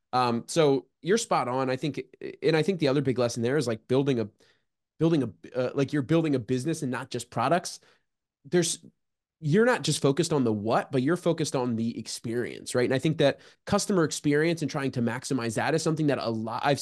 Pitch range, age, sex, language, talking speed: 125-160 Hz, 20-39, male, English, 225 wpm